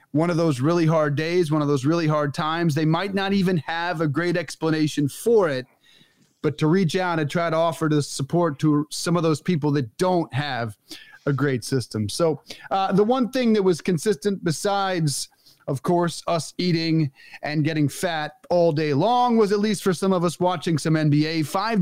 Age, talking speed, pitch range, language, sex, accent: 30-49, 200 wpm, 150-190 Hz, English, male, American